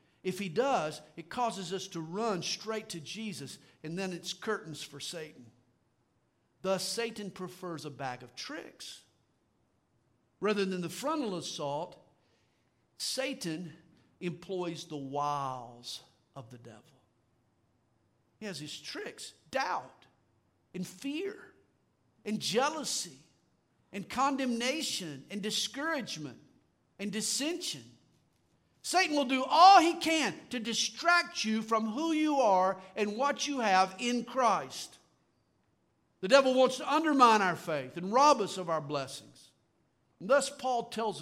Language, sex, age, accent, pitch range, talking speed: English, male, 50-69, American, 155-220 Hz, 125 wpm